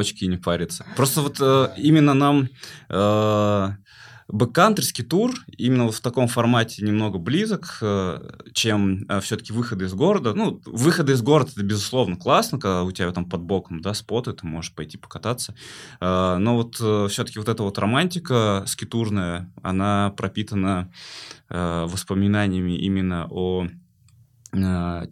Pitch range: 90-120 Hz